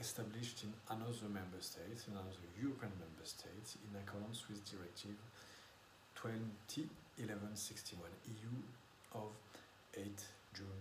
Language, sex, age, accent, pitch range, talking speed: English, male, 50-69, French, 95-115 Hz, 105 wpm